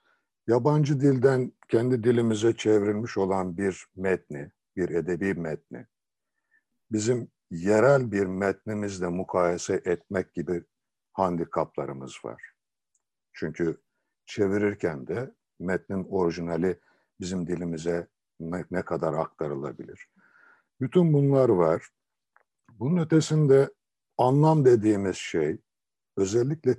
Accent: native